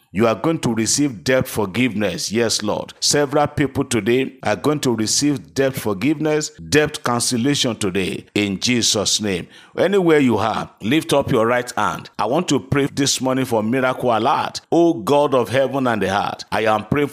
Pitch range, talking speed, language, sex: 110-140 Hz, 180 wpm, English, male